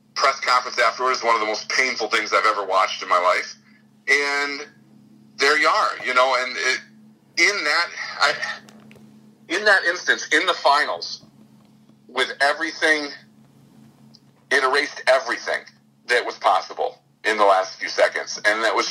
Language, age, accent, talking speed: English, 50-69, American, 145 wpm